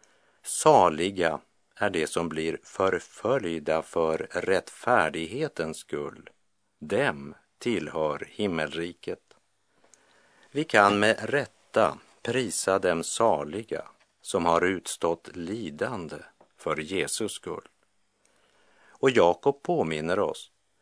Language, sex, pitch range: Polish, male, 85-110 Hz